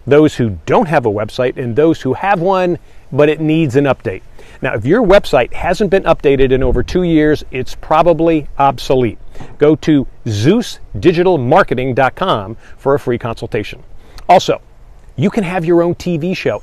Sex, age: male, 40-59